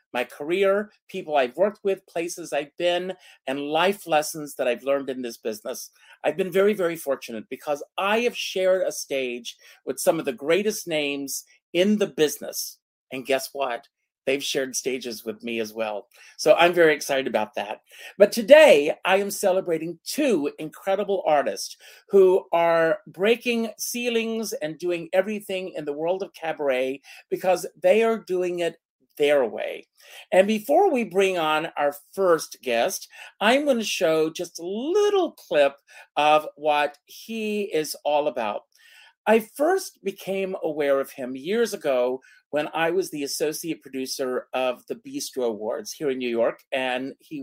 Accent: American